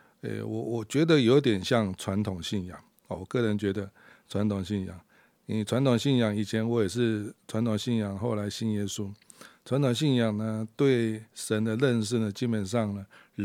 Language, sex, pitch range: Chinese, male, 105-125 Hz